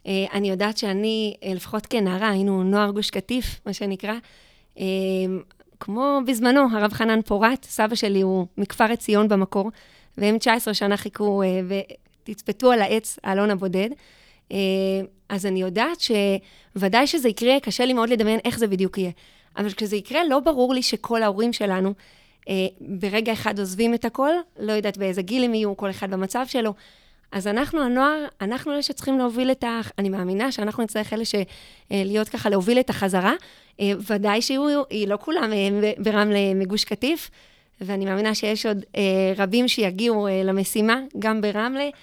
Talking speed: 150 wpm